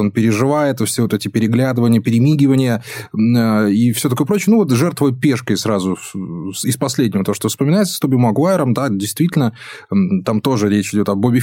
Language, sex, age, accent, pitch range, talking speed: Russian, male, 20-39, native, 110-150 Hz, 175 wpm